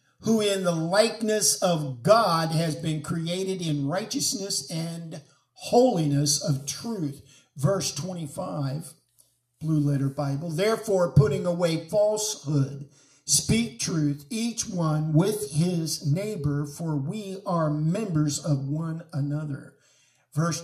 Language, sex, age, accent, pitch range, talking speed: English, male, 50-69, American, 150-210 Hz, 115 wpm